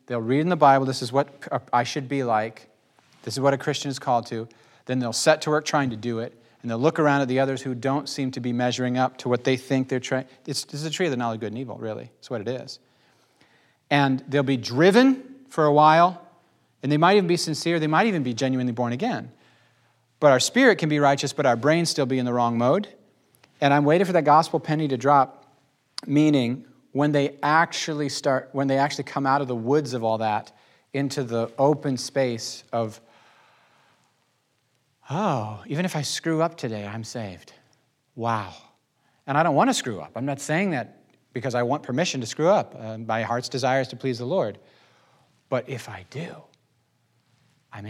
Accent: American